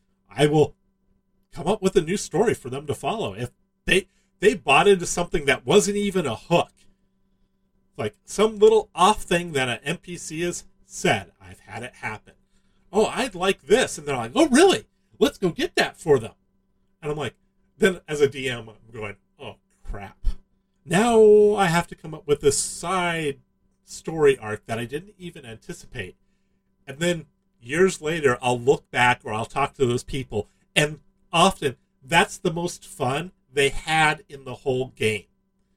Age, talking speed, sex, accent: 40-59, 175 wpm, male, American